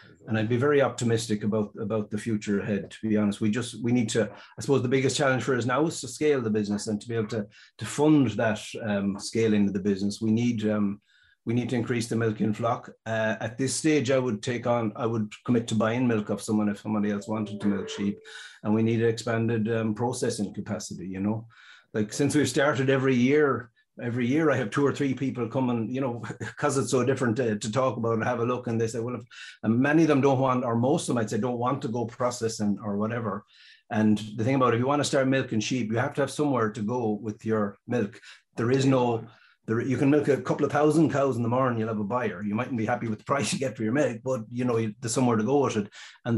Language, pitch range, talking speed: English, 110-130 Hz, 265 wpm